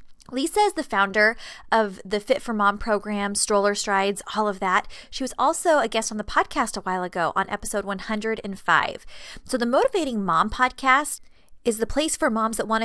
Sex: female